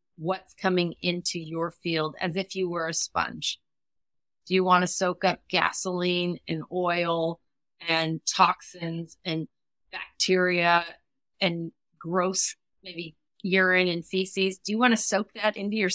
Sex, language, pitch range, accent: female, English, 170-195 Hz, American